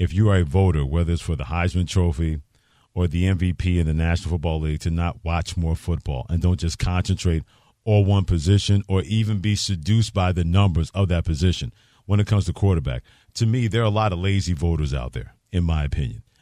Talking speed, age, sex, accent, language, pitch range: 220 wpm, 50-69, male, American, English, 95-120 Hz